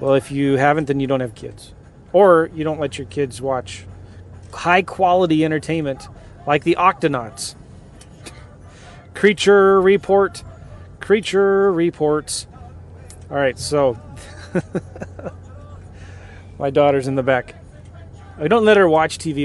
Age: 30-49